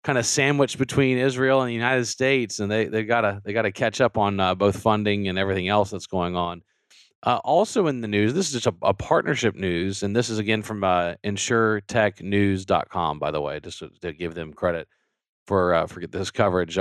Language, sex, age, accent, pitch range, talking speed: English, male, 40-59, American, 100-120 Hz, 220 wpm